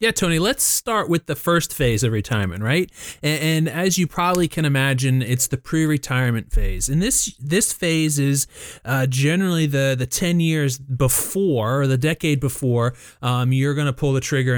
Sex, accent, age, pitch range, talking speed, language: male, American, 30-49, 125-155 Hz, 185 wpm, English